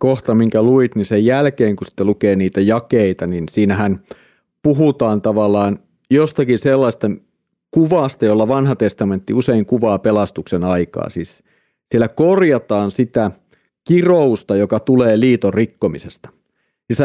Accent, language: native, Finnish